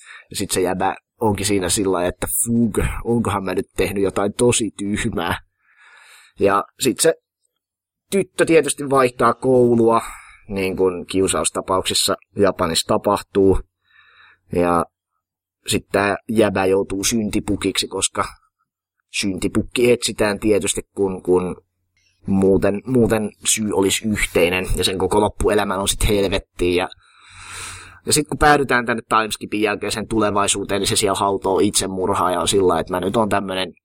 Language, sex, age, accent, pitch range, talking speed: Finnish, male, 20-39, native, 95-110 Hz, 130 wpm